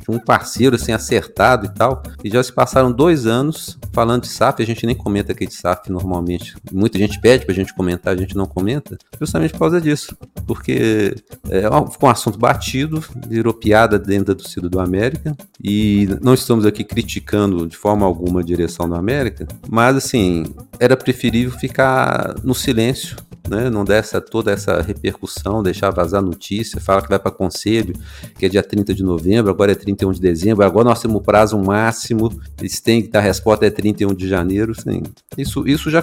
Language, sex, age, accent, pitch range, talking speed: Portuguese, male, 40-59, Brazilian, 95-120 Hz, 190 wpm